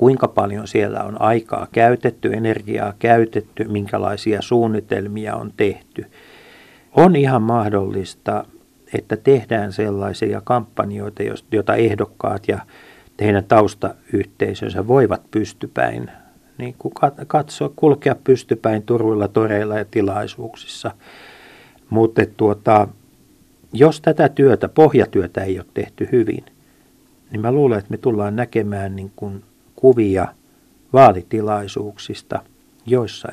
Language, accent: Finnish, native